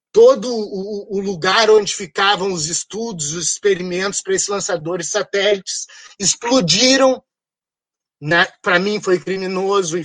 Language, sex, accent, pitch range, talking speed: Portuguese, male, Brazilian, 175-225 Hz, 120 wpm